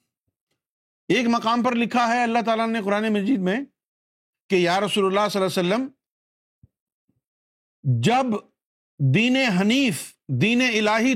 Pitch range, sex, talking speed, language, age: 185-245 Hz, male, 130 wpm, Urdu, 50-69